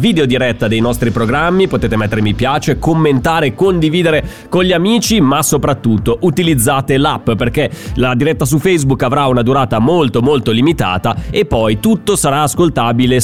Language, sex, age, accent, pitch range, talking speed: Italian, male, 30-49, native, 120-155 Hz, 155 wpm